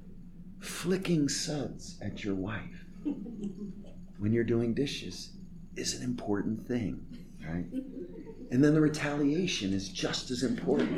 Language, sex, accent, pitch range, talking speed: English, male, American, 115-185 Hz, 120 wpm